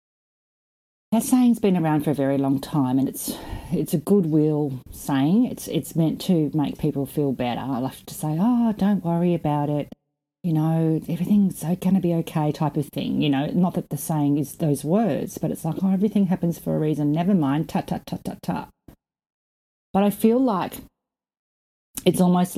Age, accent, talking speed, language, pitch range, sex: 40-59, Australian, 185 wpm, English, 150-180 Hz, female